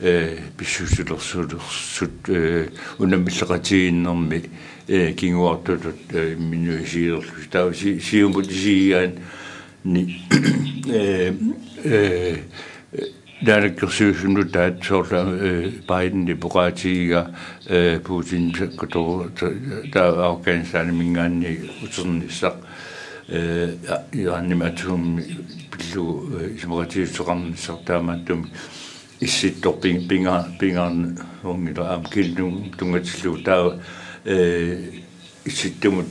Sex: male